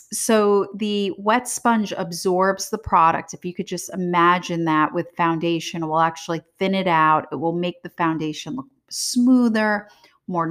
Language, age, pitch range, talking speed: English, 30-49, 160-195 Hz, 165 wpm